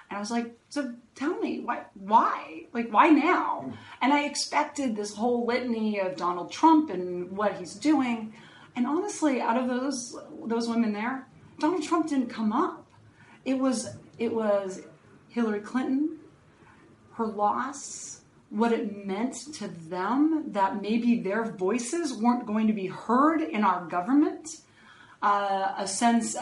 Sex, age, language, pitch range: female, 40-59, English, 185-250 Hz